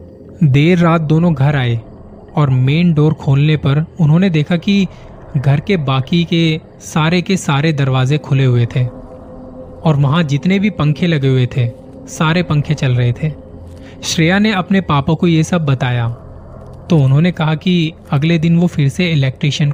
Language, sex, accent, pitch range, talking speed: Hindi, male, native, 130-165 Hz, 165 wpm